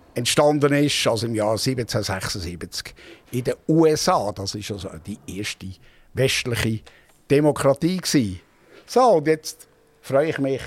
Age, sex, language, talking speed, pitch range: 60-79, male, German, 125 wpm, 110-140 Hz